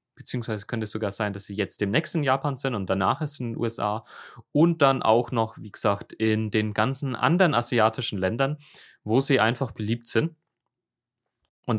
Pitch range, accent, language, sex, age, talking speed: 110-135 Hz, German, German, male, 20-39, 185 wpm